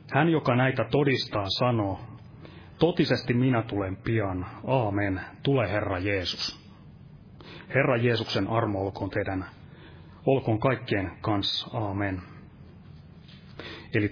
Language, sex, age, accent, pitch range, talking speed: Finnish, male, 30-49, native, 105-140 Hz, 100 wpm